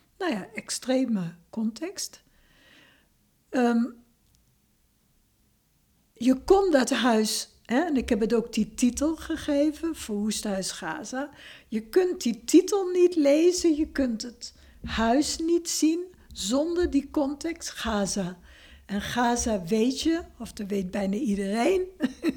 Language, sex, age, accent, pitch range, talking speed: Dutch, female, 60-79, Dutch, 205-275 Hz, 125 wpm